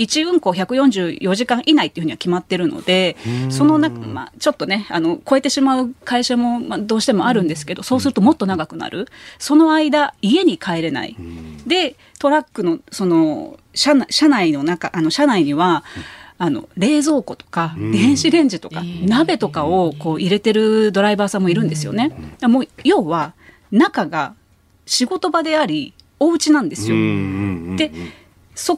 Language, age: Japanese, 30-49